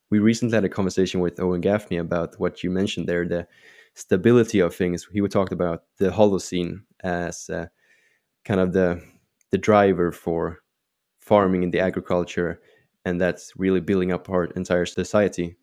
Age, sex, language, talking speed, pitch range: 20-39, male, English, 160 wpm, 90-100 Hz